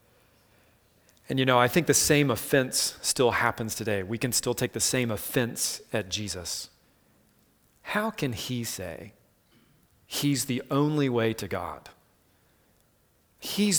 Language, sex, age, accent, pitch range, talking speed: English, male, 40-59, American, 110-160 Hz, 135 wpm